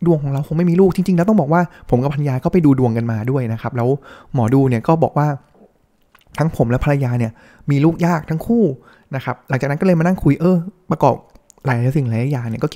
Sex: male